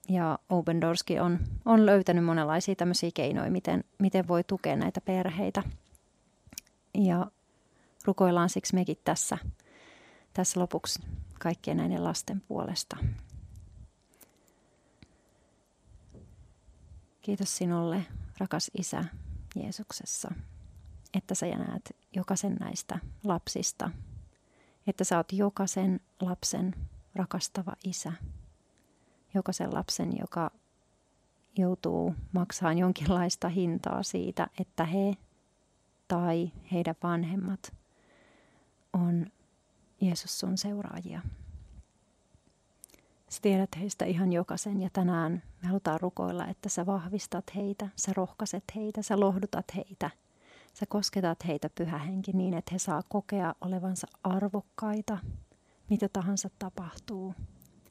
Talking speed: 95 wpm